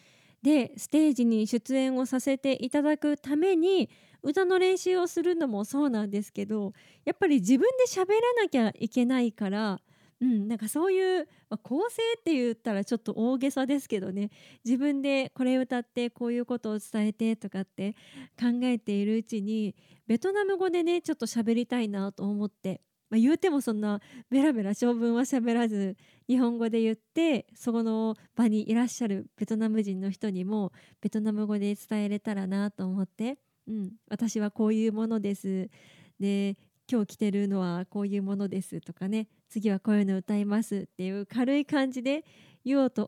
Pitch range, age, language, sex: 205-270 Hz, 20-39, Japanese, female